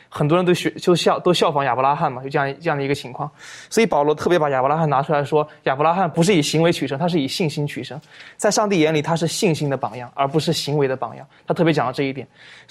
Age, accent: 20-39, native